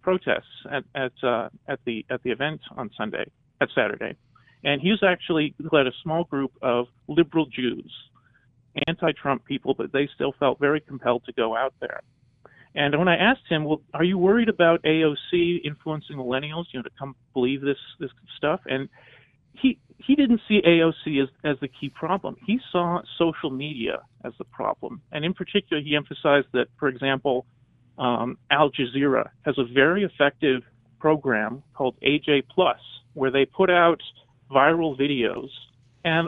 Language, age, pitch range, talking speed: English, 40-59, 125-155 Hz, 165 wpm